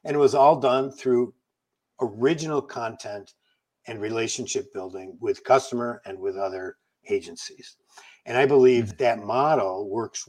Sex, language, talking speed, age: male, English, 135 wpm, 60-79